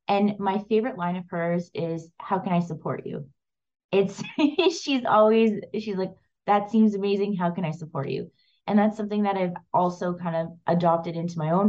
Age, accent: 20-39, American